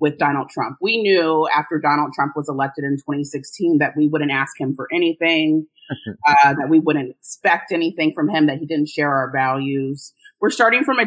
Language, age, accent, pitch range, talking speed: English, 30-49, American, 150-190 Hz, 200 wpm